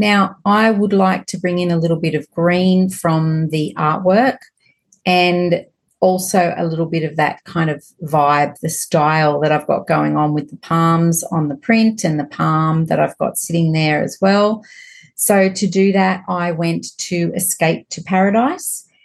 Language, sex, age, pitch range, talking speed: English, female, 40-59, 160-195 Hz, 185 wpm